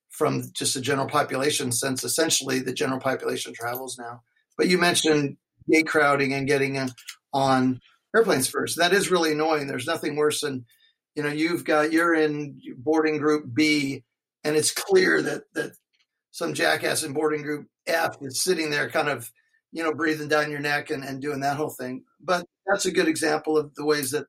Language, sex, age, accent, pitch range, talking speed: English, male, 50-69, American, 135-165 Hz, 190 wpm